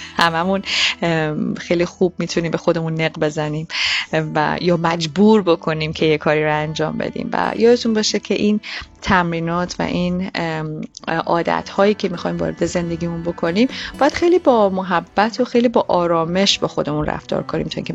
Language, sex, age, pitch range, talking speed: Persian, female, 30-49, 160-210 Hz, 155 wpm